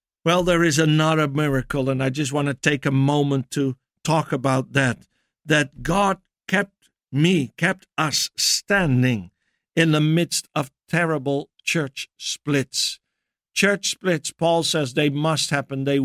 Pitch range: 140-170 Hz